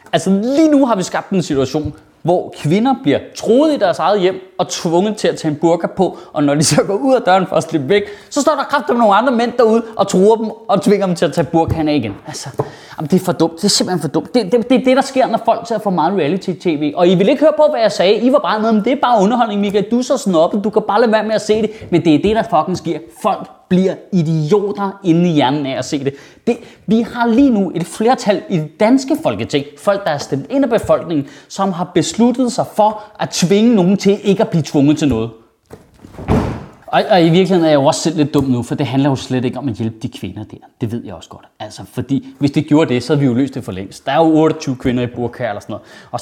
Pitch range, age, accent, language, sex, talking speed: 145-210 Hz, 30-49, native, Danish, male, 280 wpm